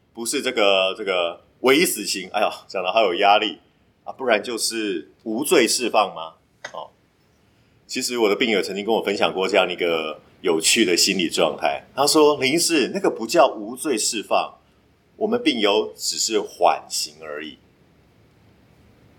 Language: Chinese